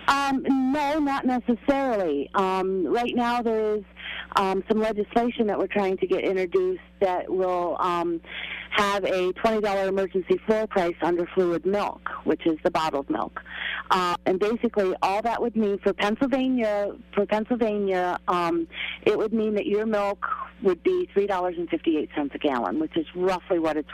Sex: female